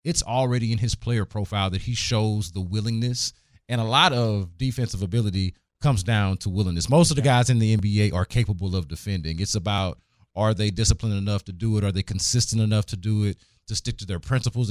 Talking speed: 215 wpm